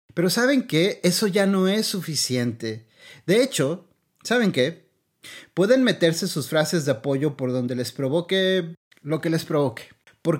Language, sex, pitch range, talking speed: Spanish, male, 130-175 Hz, 155 wpm